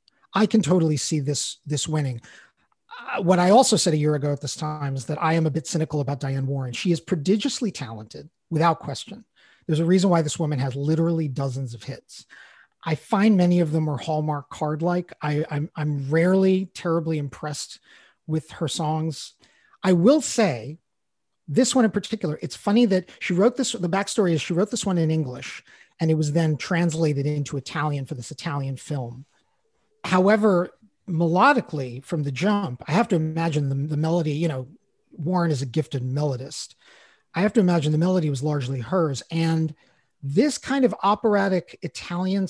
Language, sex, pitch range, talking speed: English, male, 150-185 Hz, 180 wpm